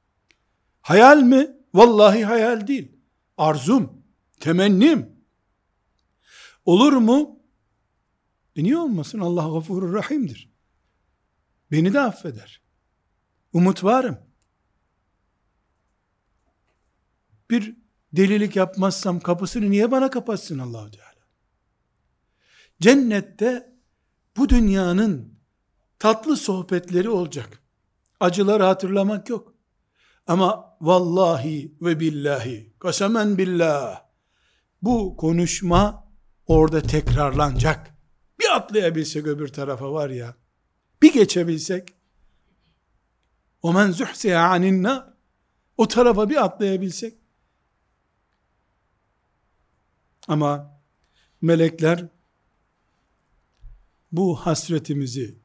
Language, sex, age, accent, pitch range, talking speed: Turkish, male, 60-79, native, 130-205 Hz, 75 wpm